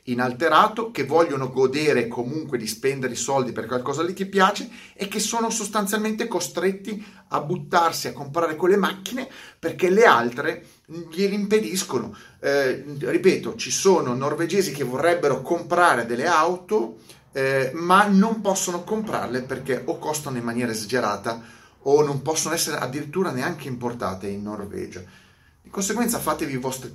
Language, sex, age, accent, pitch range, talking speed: Italian, male, 30-49, native, 120-180 Hz, 145 wpm